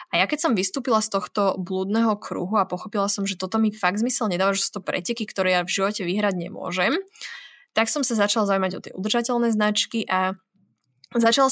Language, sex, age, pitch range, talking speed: Slovak, female, 20-39, 190-235 Hz, 205 wpm